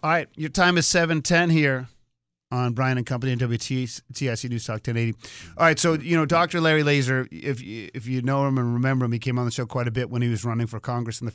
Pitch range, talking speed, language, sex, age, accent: 115-135 Hz, 265 wpm, English, male, 30-49, American